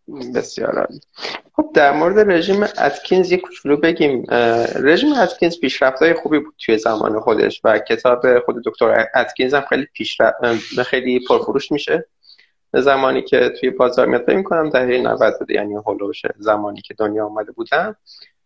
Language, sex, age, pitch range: Persian, male, 30-49, 115-185 Hz